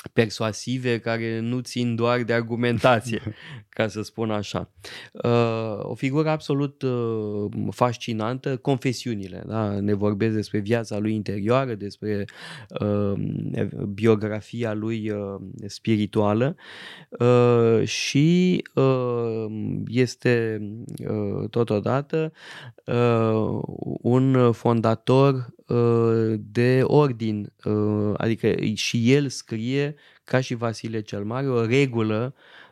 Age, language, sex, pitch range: 20-39, Romanian, male, 105-125 Hz